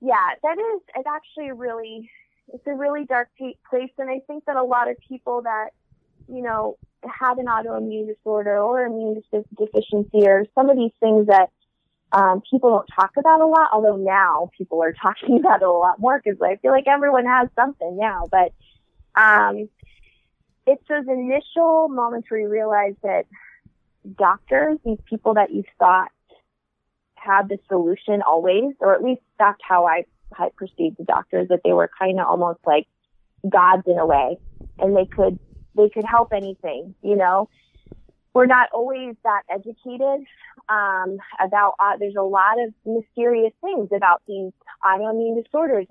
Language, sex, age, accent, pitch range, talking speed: English, female, 20-39, American, 195-250 Hz, 165 wpm